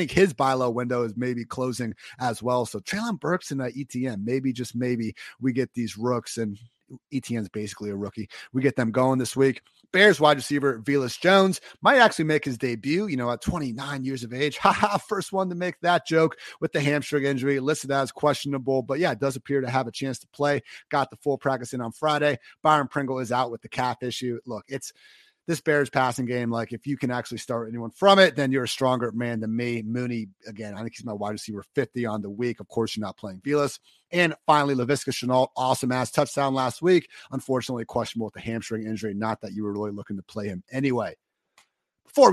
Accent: American